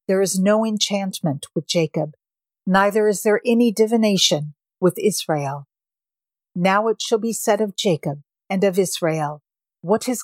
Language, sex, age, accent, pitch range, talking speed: English, female, 50-69, American, 165-210 Hz, 145 wpm